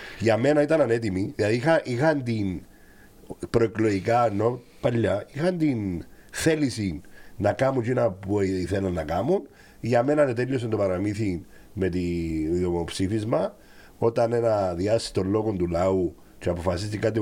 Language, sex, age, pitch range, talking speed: Greek, male, 50-69, 95-140 Hz, 130 wpm